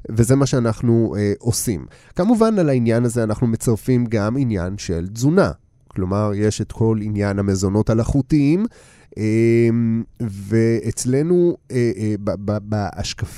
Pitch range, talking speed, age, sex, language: 105-135 Hz, 110 wpm, 30-49, male, Hebrew